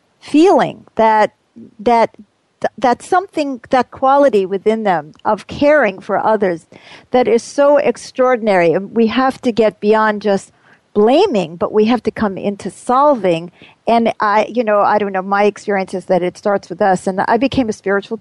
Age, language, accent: 50-69, English, American